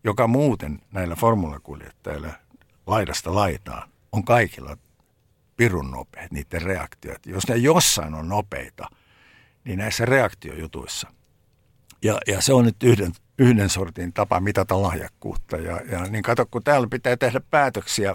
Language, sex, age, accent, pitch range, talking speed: Finnish, male, 60-79, native, 95-120 Hz, 130 wpm